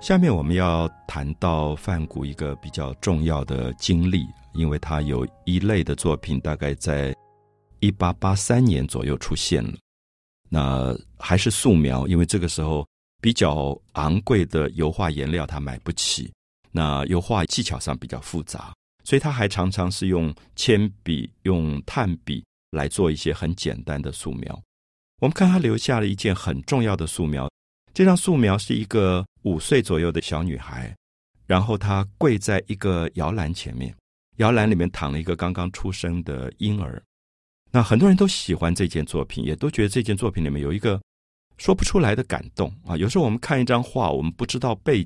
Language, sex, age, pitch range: Chinese, male, 50-69, 75-110 Hz